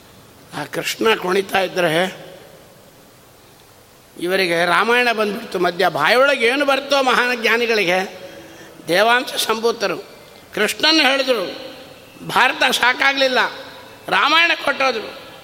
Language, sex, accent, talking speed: Kannada, male, native, 80 wpm